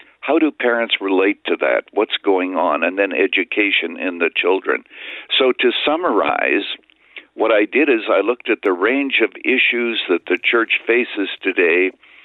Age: 60-79